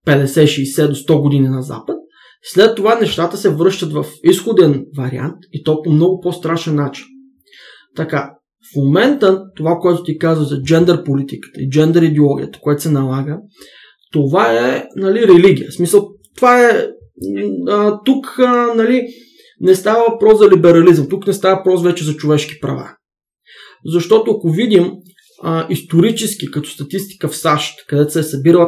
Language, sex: Bulgarian, male